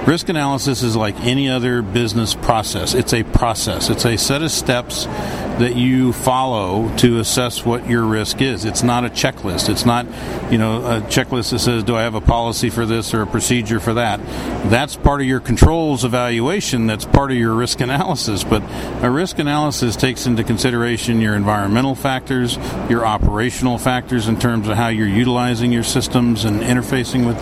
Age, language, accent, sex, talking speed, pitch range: 50-69, English, American, male, 185 wpm, 115-130 Hz